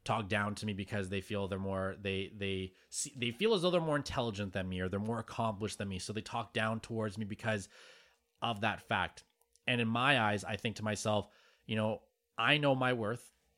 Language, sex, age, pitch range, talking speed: English, male, 20-39, 105-120 Hz, 225 wpm